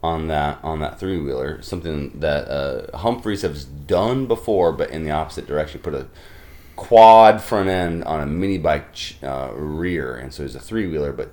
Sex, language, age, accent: male, English, 30-49, American